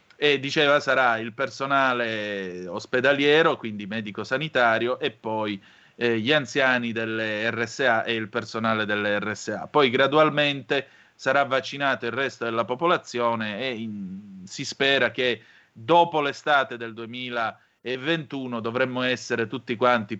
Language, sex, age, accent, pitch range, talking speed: Italian, male, 30-49, native, 115-140 Hz, 125 wpm